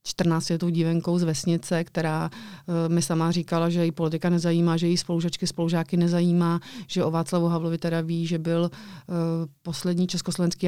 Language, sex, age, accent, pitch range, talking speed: Czech, female, 30-49, native, 165-180 Hz, 165 wpm